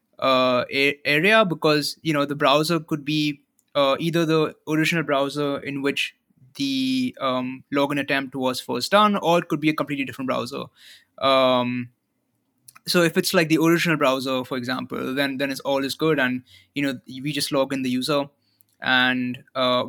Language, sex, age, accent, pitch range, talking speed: English, male, 20-39, Indian, 130-155 Hz, 180 wpm